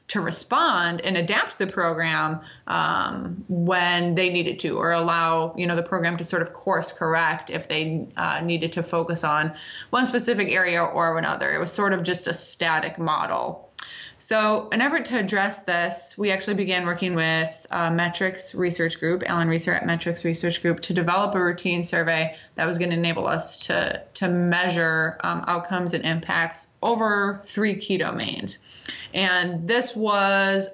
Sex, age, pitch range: female, 20-39, 165-190 Hz